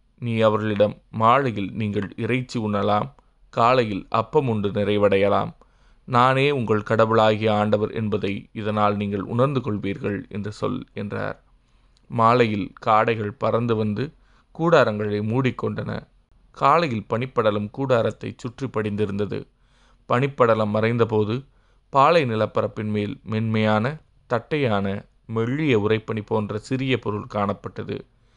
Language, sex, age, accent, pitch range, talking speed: Tamil, male, 20-39, native, 105-120 Hz, 95 wpm